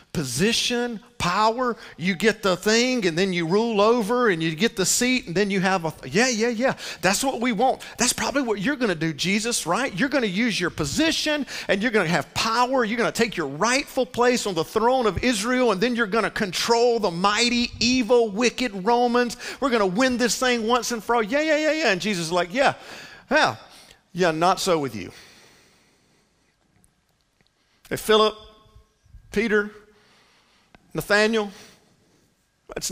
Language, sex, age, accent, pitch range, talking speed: English, male, 50-69, American, 180-240 Hz, 185 wpm